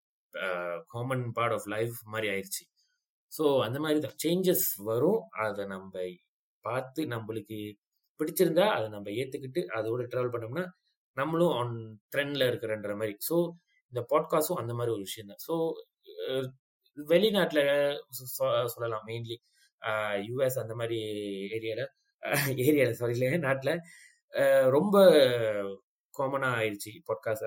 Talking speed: 70 wpm